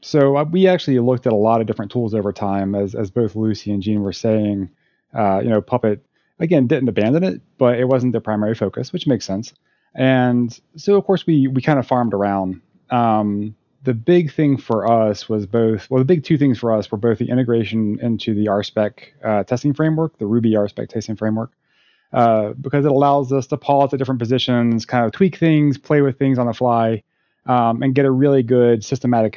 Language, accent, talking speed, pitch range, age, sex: English, American, 215 wpm, 110-140 Hz, 30-49, male